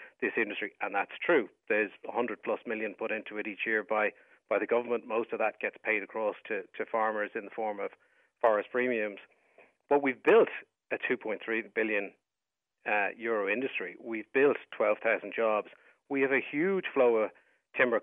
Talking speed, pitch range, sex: 175 wpm, 110-140 Hz, male